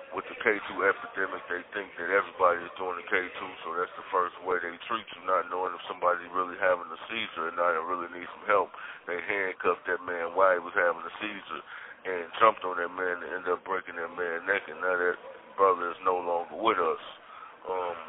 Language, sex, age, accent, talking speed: English, male, 30-49, American, 220 wpm